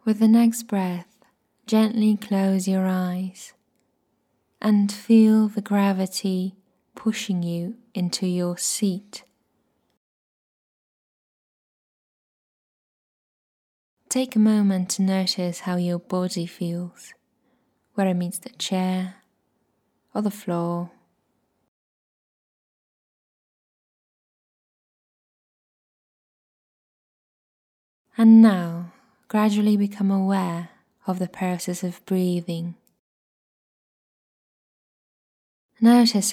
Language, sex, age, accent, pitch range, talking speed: English, female, 20-39, British, 180-215 Hz, 75 wpm